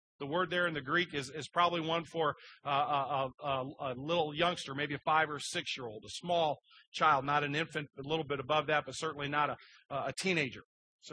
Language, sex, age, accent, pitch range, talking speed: English, male, 40-59, American, 145-205 Hz, 215 wpm